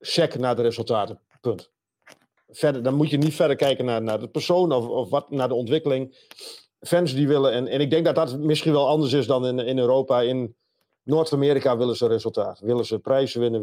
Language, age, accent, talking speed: Dutch, 40-59, Dutch, 205 wpm